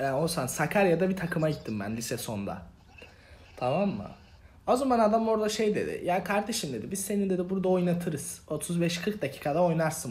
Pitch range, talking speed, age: 170-230 Hz, 160 wpm, 30-49